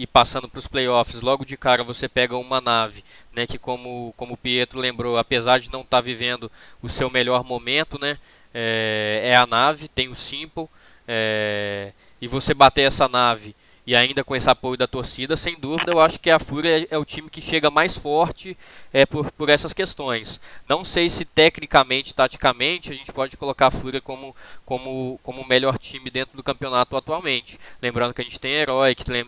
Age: 10-29